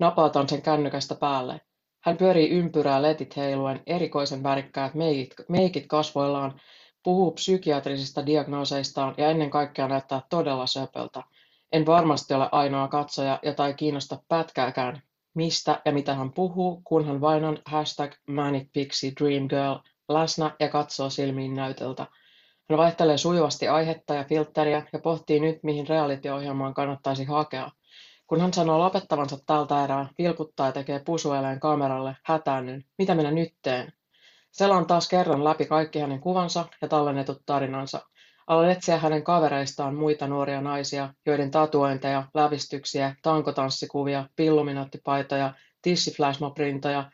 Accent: native